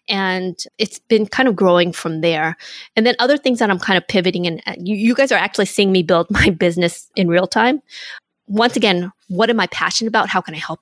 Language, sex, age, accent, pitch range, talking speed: English, female, 20-39, American, 175-210 Hz, 235 wpm